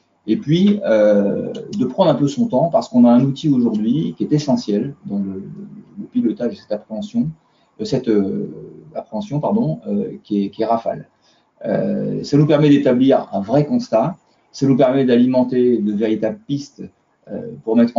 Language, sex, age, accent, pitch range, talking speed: French, male, 30-49, French, 115-165 Hz, 185 wpm